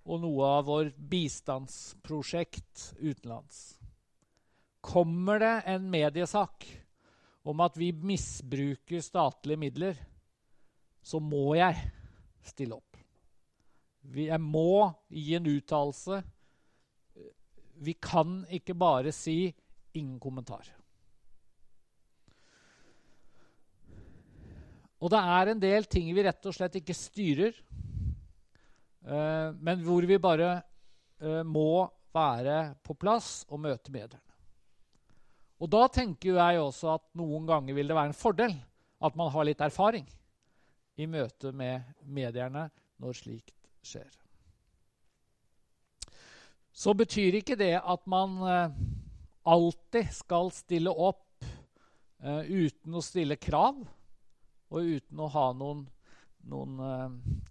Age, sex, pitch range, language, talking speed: 50-69, male, 130-175 Hz, Danish, 110 wpm